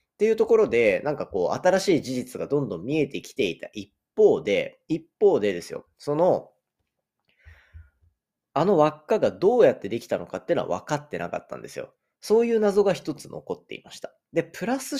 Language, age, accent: Japanese, 30-49, native